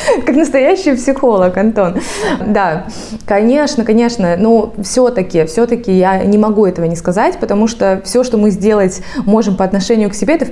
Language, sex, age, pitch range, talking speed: Russian, female, 20-39, 185-240 Hz, 165 wpm